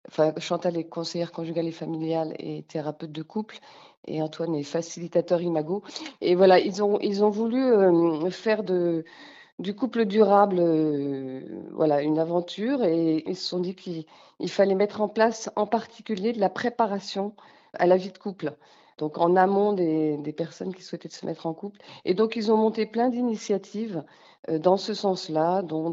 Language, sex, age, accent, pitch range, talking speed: French, female, 40-59, French, 165-200 Hz, 175 wpm